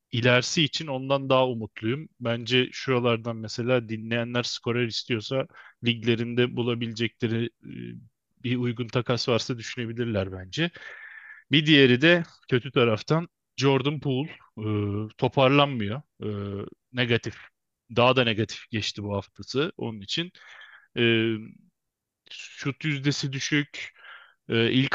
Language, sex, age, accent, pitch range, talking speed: Turkish, male, 30-49, native, 115-140 Hz, 105 wpm